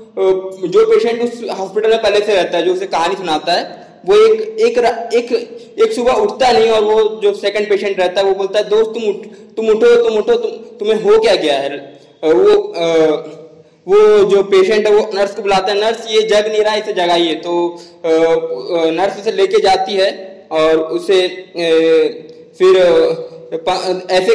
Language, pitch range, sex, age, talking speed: Hindi, 175-225 Hz, male, 20-39, 185 wpm